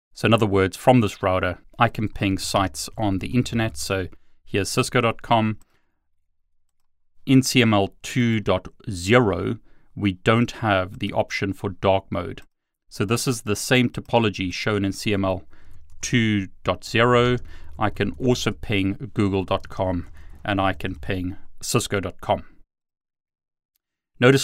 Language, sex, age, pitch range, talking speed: English, male, 30-49, 95-120 Hz, 120 wpm